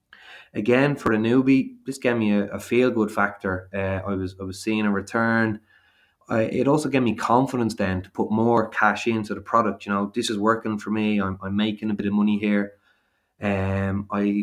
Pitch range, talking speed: 100-115 Hz, 210 wpm